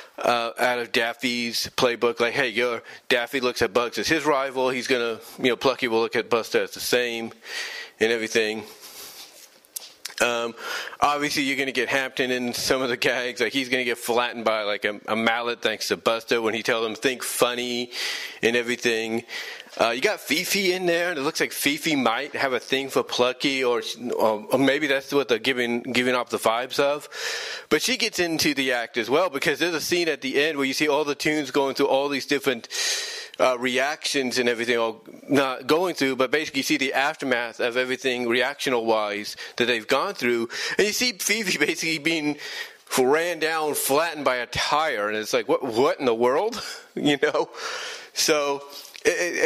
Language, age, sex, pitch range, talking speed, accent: English, 30-49, male, 120-160 Hz, 200 wpm, American